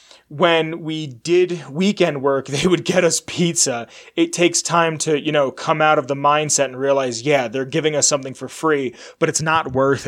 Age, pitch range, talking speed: 20-39, 140-175 Hz, 200 wpm